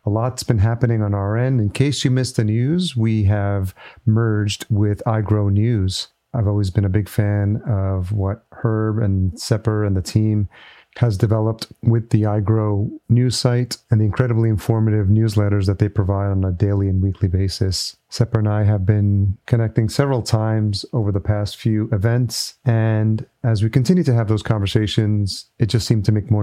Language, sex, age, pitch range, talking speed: English, male, 40-59, 105-115 Hz, 185 wpm